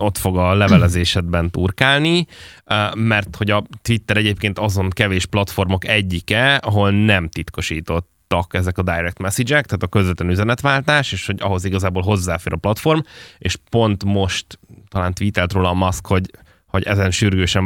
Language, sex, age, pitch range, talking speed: Hungarian, male, 20-39, 95-110 Hz, 150 wpm